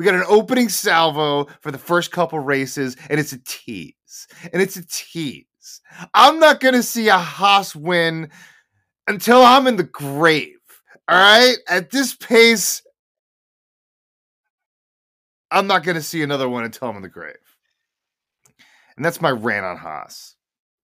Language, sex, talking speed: English, male, 155 wpm